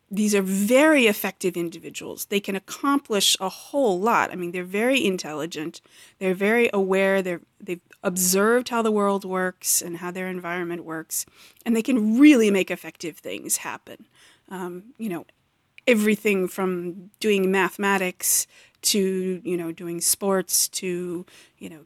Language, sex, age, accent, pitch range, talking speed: English, female, 30-49, American, 180-225 Hz, 145 wpm